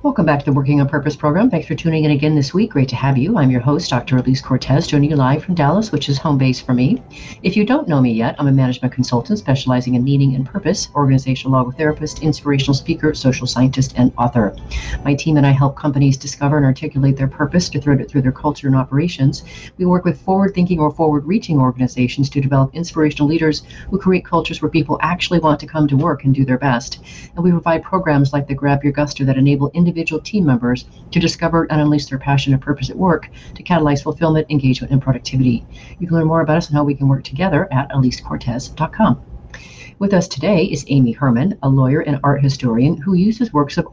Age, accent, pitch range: 40-59, American, 135-165 Hz